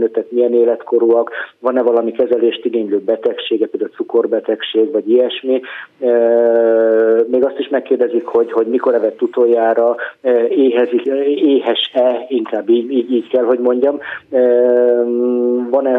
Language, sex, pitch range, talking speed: Hungarian, male, 115-135 Hz, 105 wpm